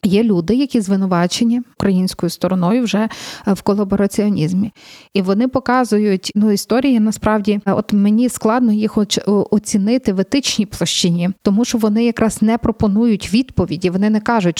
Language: Ukrainian